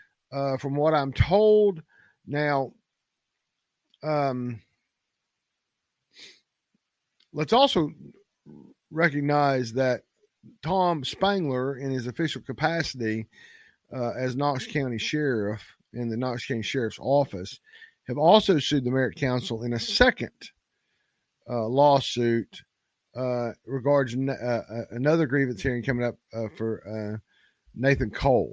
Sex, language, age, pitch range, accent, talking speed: male, English, 50-69, 125-160 Hz, American, 110 wpm